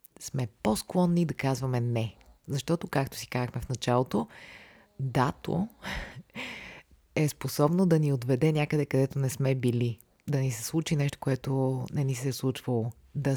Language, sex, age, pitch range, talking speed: Bulgarian, female, 30-49, 130-155 Hz, 155 wpm